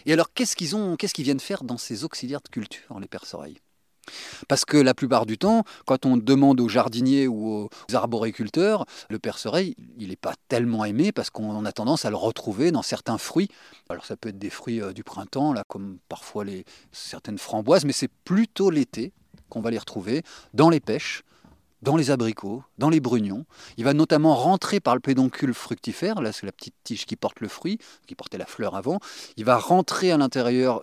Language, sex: French, male